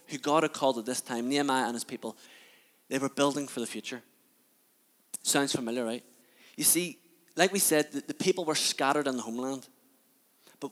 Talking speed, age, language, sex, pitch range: 185 wpm, 20-39, English, male, 120-155 Hz